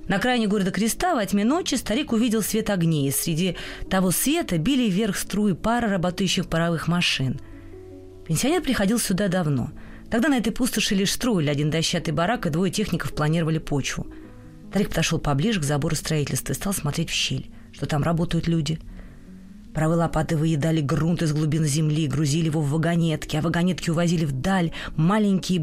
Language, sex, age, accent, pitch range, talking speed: Russian, female, 20-39, native, 150-195 Hz, 165 wpm